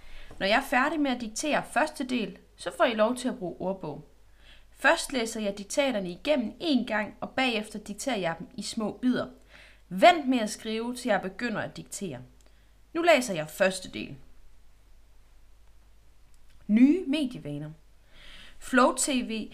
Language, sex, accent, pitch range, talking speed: Danish, female, native, 185-255 Hz, 155 wpm